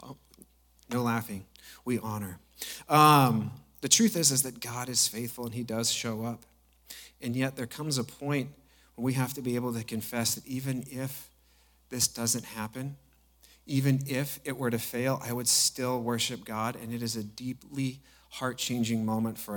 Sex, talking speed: male, 175 wpm